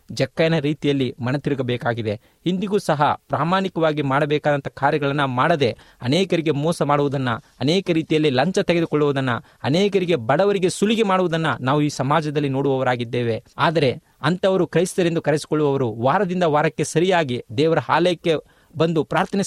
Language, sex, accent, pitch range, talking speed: Kannada, male, native, 130-170 Hz, 110 wpm